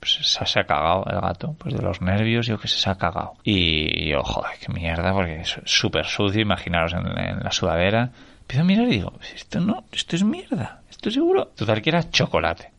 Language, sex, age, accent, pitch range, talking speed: Spanish, male, 20-39, Spanish, 95-130 Hz, 210 wpm